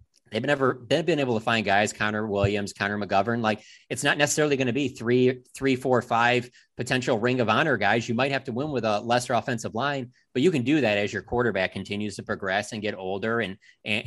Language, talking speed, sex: English, 225 wpm, male